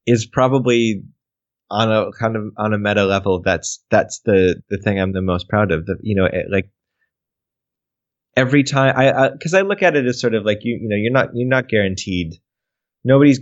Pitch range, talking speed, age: 95-125 Hz, 200 wpm, 20-39